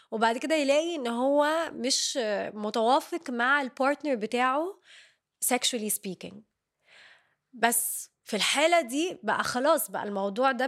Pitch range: 220-270 Hz